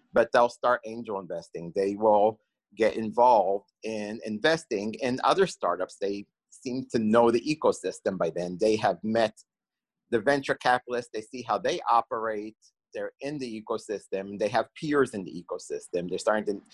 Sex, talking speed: male, 165 wpm